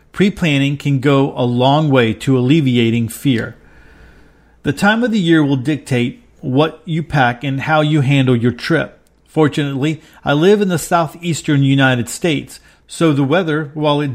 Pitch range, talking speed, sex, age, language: 135-160 Hz, 160 wpm, male, 40-59, English